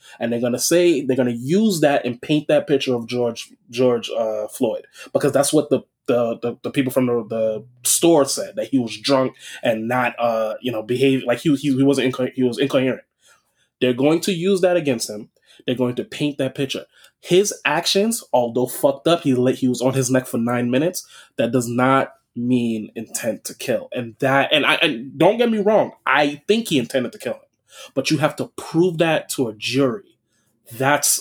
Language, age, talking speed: English, 20-39, 210 wpm